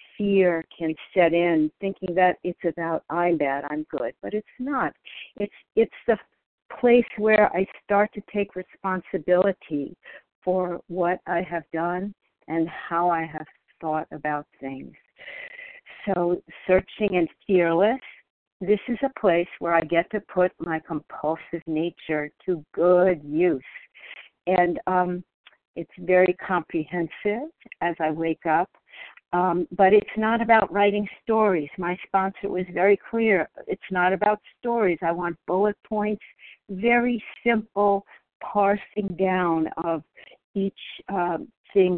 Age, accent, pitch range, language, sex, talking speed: 60-79, American, 170-200 Hz, English, female, 135 wpm